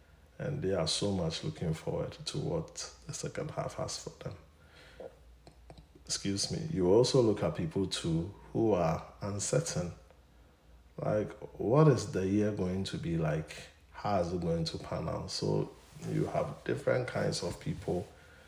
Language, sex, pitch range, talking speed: English, male, 75-90 Hz, 160 wpm